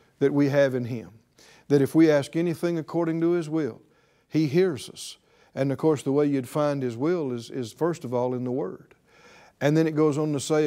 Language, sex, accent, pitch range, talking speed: English, male, American, 145-190 Hz, 230 wpm